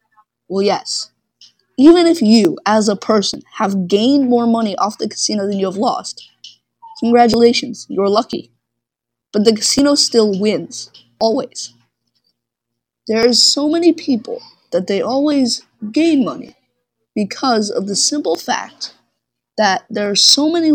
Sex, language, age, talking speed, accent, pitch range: female, English, 20-39, 140 wpm, American, 195-245 Hz